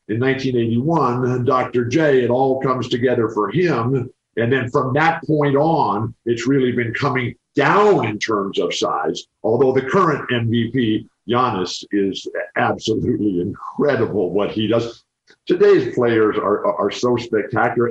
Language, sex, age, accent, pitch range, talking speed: English, male, 50-69, American, 115-145 Hz, 145 wpm